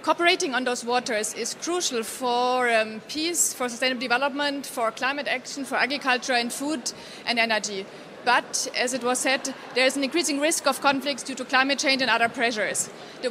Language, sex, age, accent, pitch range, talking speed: English, female, 30-49, German, 240-285 Hz, 185 wpm